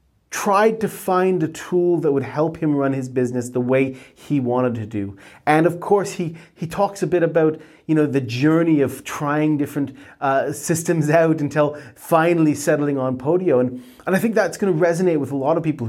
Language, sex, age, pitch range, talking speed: English, male, 30-49, 130-165 Hz, 210 wpm